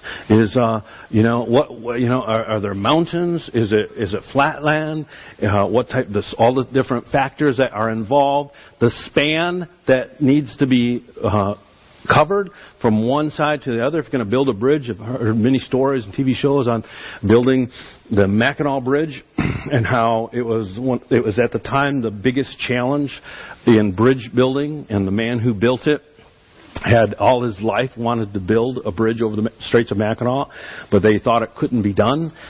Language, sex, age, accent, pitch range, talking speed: English, male, 50-69, American, 115-145 Hz, 190 wpm